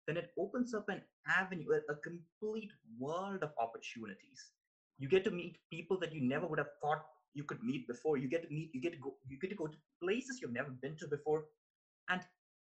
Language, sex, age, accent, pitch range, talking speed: English, male, 20-39, Indian, 155-250 Hz, 220 wpm